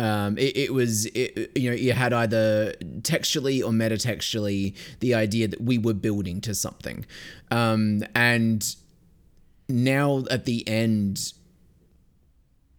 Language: English